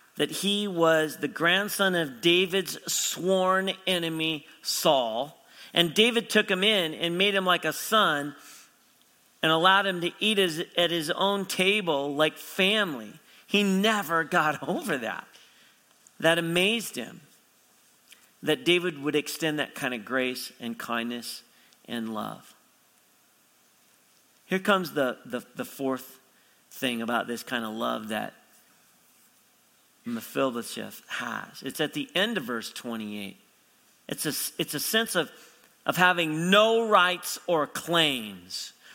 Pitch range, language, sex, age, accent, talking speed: 125-190 Hz, English, male, 40-59, American, 130 wpm